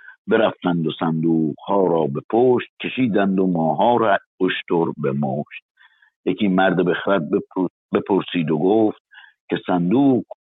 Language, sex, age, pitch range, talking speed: Persian, male, 50-69, 85-105 Hz, 120 wpm